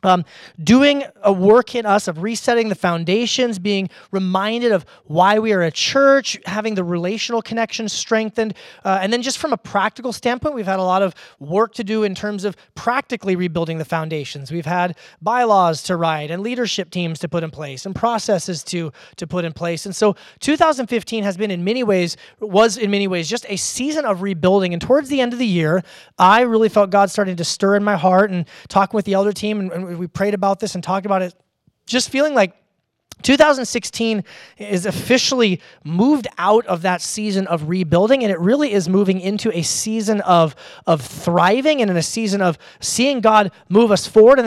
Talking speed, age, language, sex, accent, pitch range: 200 wpm, 30-49, English, male, American, 180-225 Hz